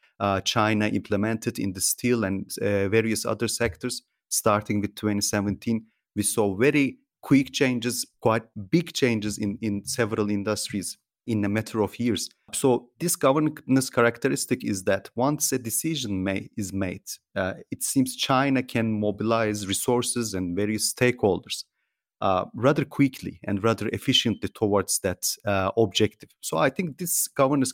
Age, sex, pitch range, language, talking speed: 30-49, male, 105-130 Hz, English, 145 wpm